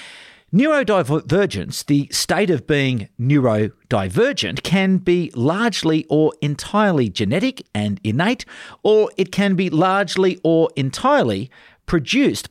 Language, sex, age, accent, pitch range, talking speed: English, male, 50-69, Australian, 115-175 Hz, 105 wpm